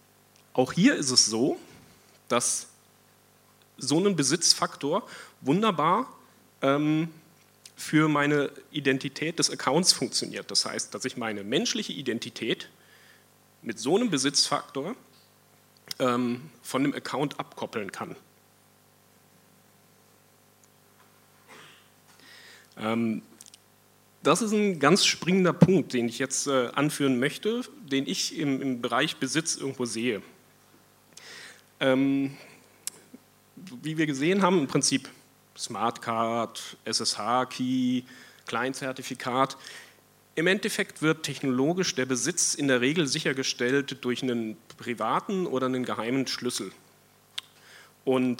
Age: 40-59